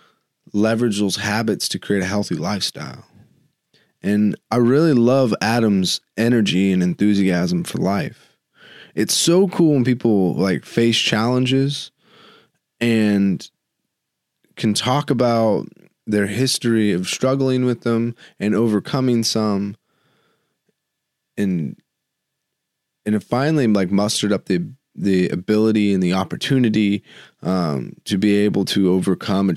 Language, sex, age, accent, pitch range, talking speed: English, male, 20-39, American, 95-120 Hz, 120 wpm